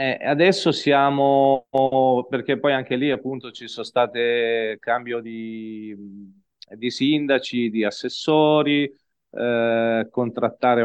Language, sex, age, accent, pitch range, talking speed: Italian, male, 30-49, native, 105-125 Hz, 105 wpm